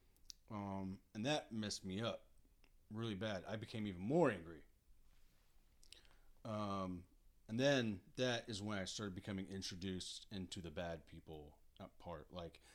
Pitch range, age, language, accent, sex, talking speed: 95-130 Hz, 30-49, English, American, male, 135 wpm